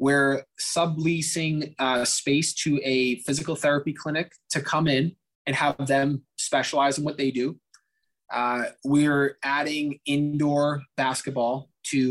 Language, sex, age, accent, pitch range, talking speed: English, male, 20-39, American, 130-155 Hz, 130 wpm